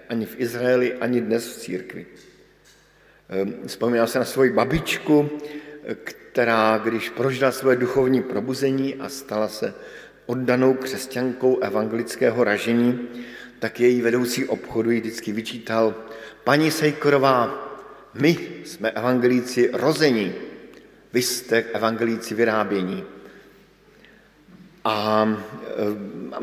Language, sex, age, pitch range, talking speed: Slovak, male, 50-69, 120-145 Hz, 100 wpm